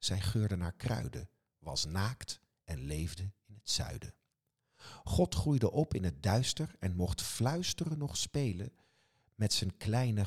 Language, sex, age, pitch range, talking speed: Dutch, male, 50-69, 90-115 Hz, 145 wpm